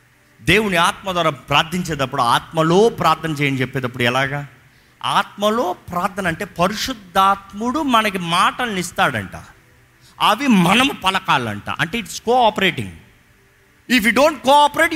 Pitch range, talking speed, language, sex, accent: 145-210 Hz, 105 wpm, Telugu, male, native